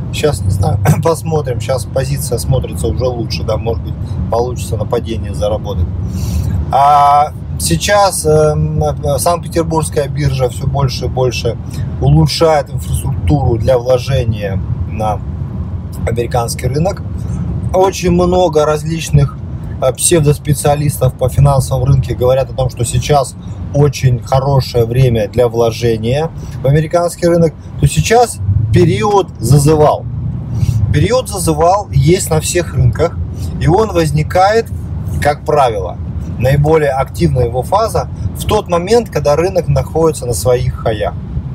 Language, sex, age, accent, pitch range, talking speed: Russian, male, 20-39, native, 110-150 Hz, 115 wpm